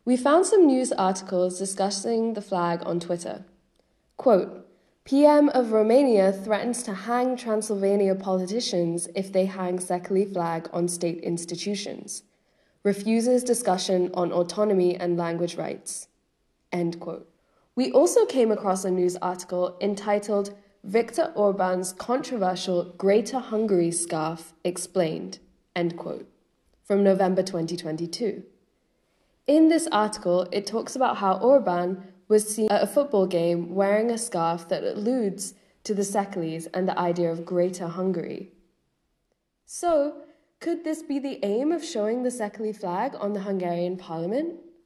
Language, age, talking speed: Hungarian, 20-39, 130 wpm